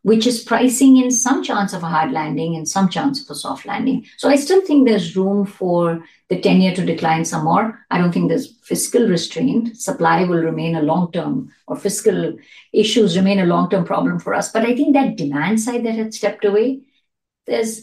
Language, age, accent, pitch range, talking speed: English, 50-69, Indian, 175-255 Hz, 205 wpm